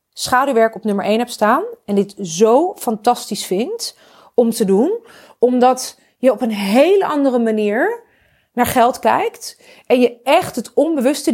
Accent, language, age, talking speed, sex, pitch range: Dutch, Dutch, 30-49, 155 wpm, female, 235-330 Hz